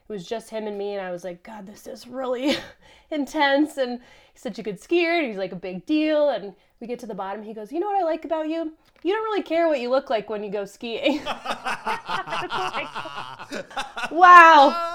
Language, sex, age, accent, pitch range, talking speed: English, female, 20-39, American, 195-270 Hz, 225 wpm